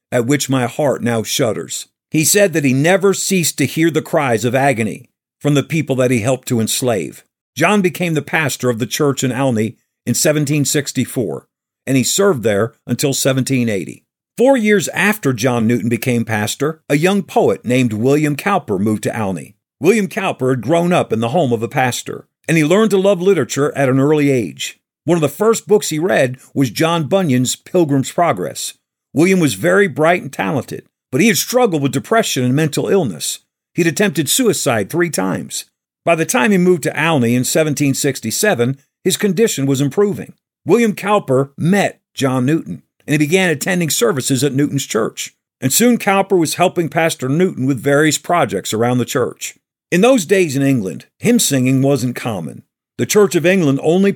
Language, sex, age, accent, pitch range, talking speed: English, male, 50-69, American, 130-175 Hz, 185 wpm